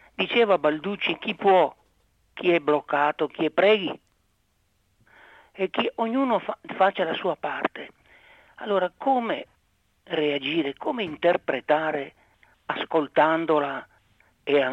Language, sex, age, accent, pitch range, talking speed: Italian, male, 50-69, native, 140-190 Hz, 100 wpm